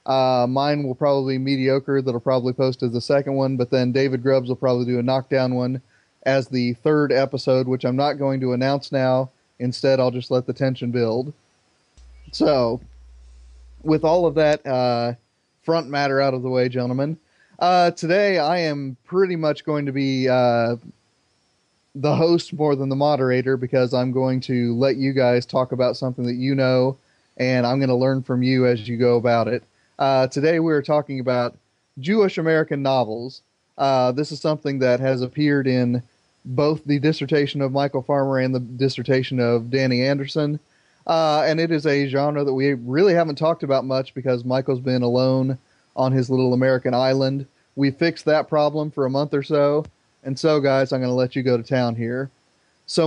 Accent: American